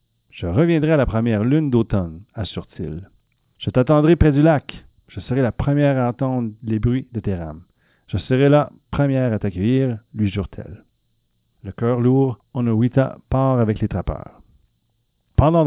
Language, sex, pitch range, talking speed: French, male, 105-140 Hz, 155 wpm